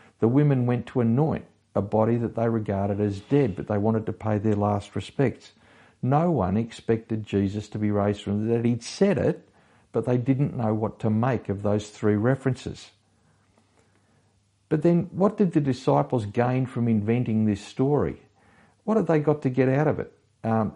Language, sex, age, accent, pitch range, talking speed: English, male, 50-69, Australian, 105-135 Hz, 190 wpm